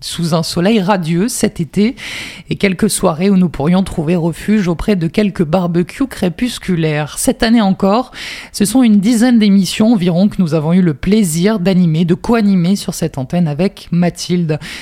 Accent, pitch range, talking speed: French, 175-220 Hz, 170 wpm